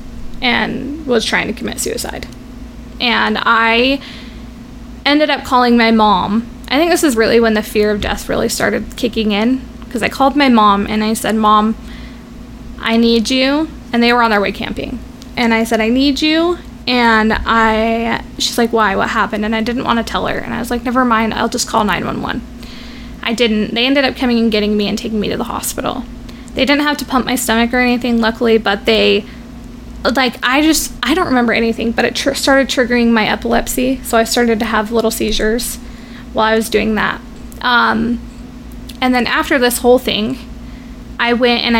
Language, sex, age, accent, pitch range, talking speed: English, female, 10-29, American, 220-250 Hz, 200 wpm